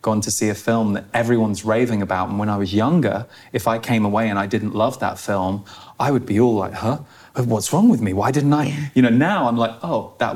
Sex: male